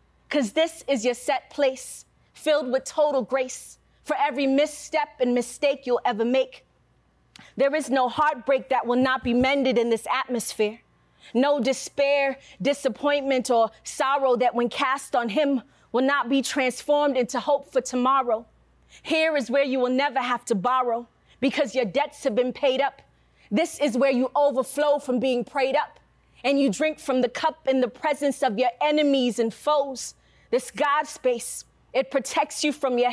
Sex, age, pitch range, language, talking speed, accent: female, 30-49, 250-290 Hz, English, 170 wpm, American